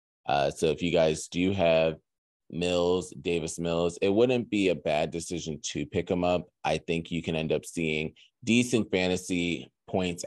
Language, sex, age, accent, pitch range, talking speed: English, male, 20-39, American, 80-95 Hz, 175 wpm